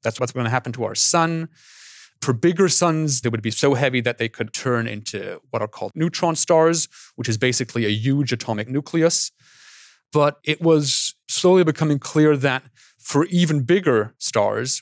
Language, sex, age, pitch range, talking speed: English, male, 30-49, 120-145 Hz, 180 wpm